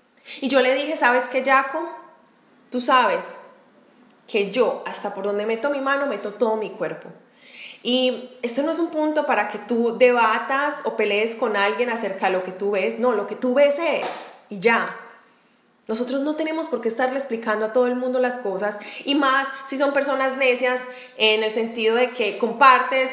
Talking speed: 190 wpm